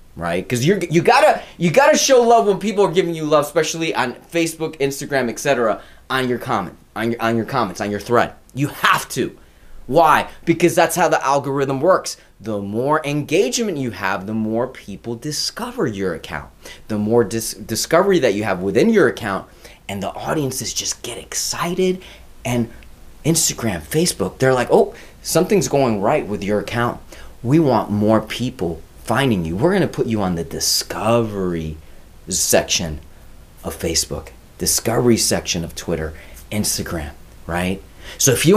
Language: English